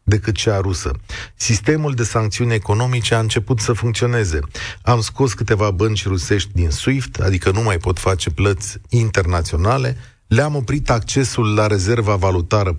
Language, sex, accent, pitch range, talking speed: Romanian, male, native, 100-120 Hz, 145 wpm